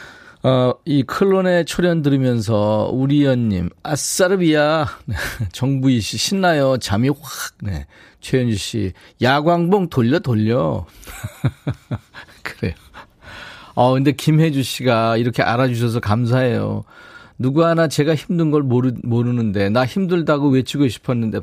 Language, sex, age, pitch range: Korean, male, 40-59, 100-145 Hz